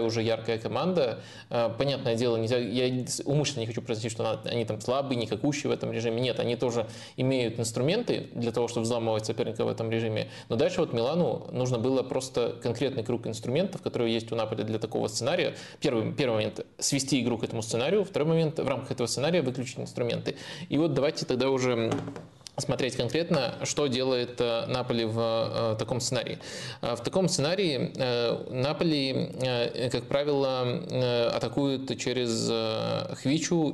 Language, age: Russian, 20-39